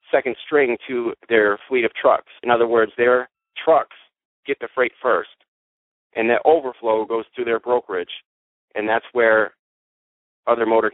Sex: male